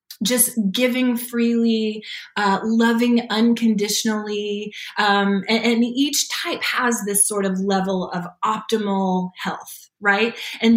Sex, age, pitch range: female, 20-39, 190-235 Hz